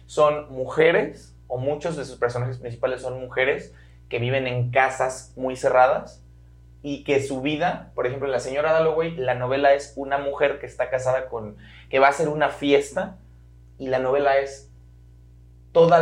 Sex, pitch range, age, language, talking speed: male, 115-140 Hz, 30-49, Spanish, 170 wpm